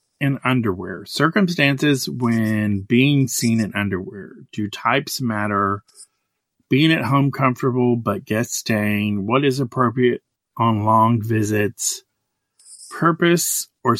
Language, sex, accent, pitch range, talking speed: English, male, American, 110-140 Hz, 110 wpm